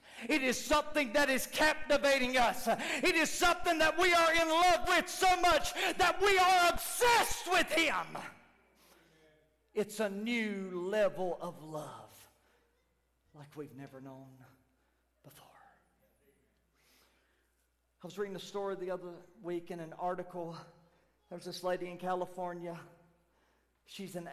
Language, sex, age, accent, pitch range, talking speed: English, male, 40-59, American, 175-215 Hz, 130 wpm